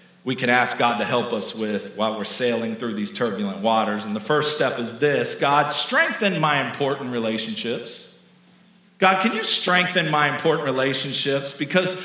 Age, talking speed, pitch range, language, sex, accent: 40-59, 170 wpm, 150-240 Hz, English, male, American